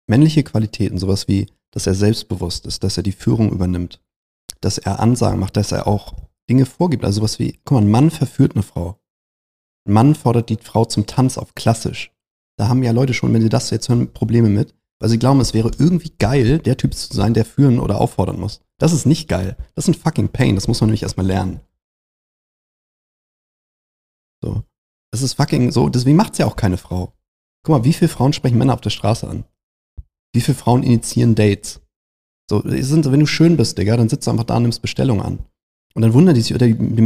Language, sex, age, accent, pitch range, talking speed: German, male, 40-59, German, 100-135 Hz, 220 wpm